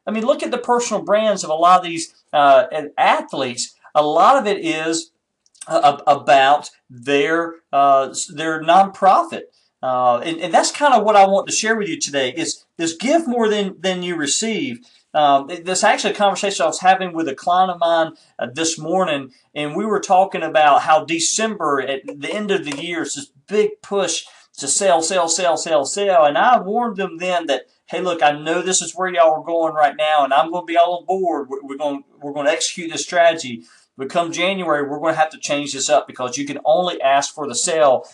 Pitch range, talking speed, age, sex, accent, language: 140-185 Hz, 220 wpm, 40-59, male, American, English